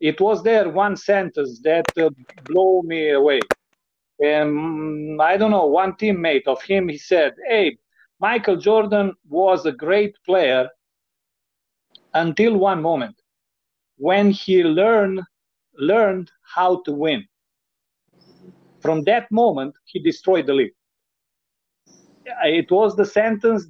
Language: Romanian